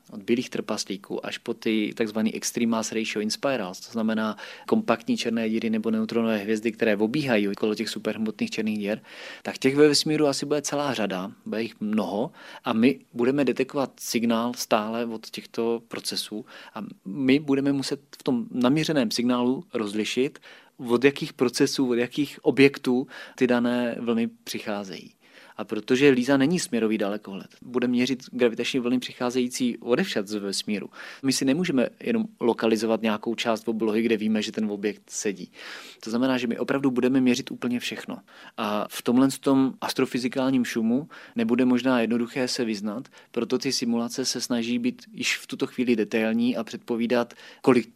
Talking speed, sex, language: 160 wpm, male, Czech